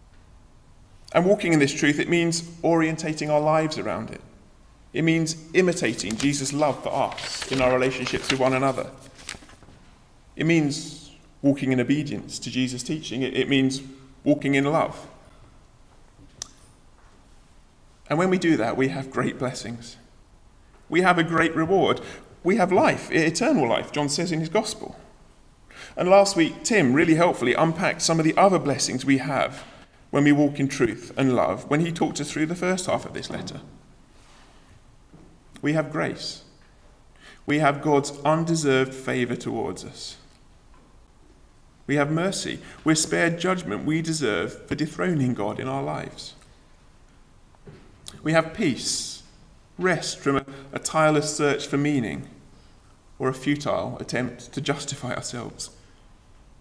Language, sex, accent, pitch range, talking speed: English, male, British, 130-160 Hz, 145 wpm